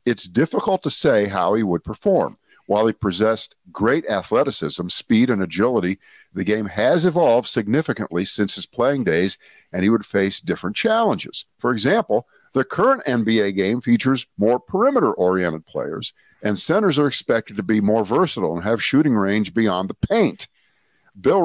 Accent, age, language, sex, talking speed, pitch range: American, 50-69, English, male, 160 wpm, 100-135 Hz